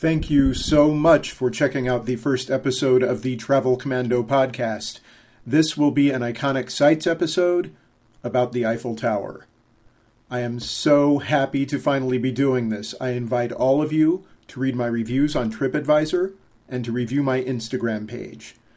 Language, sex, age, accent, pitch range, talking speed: English, male, 40-59, American, 120-155 Hz, 165 wpm